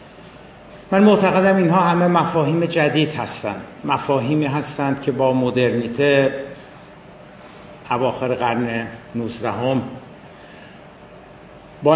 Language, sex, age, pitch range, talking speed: Persian, male, 60-79, 130-155 Hz, 85 wpm